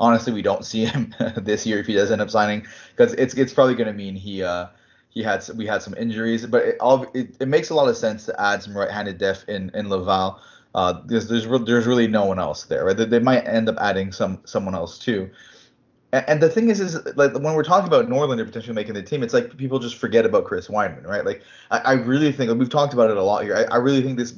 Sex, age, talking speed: male, 20-39, 270 wpm